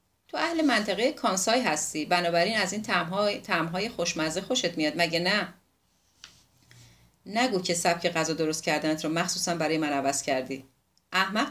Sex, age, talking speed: female, 40-59, 140 wpm